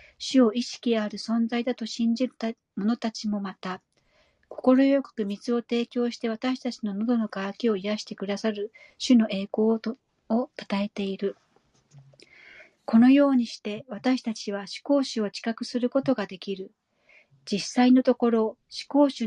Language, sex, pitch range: Japanese, female, 200-245 Hz